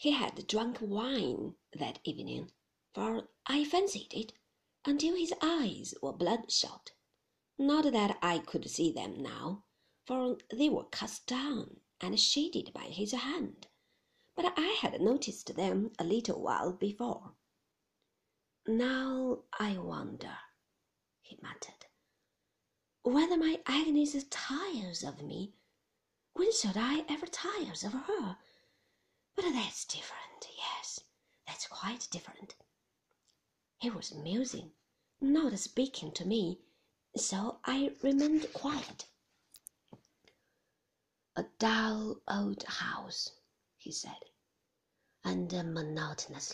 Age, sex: 40-59, female